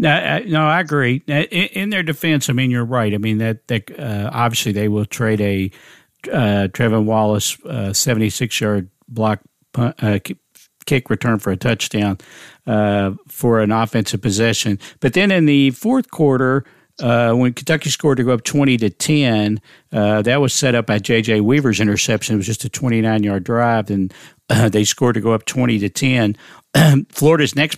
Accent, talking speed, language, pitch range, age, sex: American, 185 wpm, English, 110-130 Hz, 50-69, male